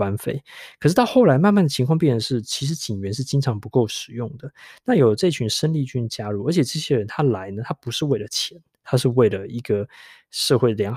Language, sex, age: Chinese, male, 20-39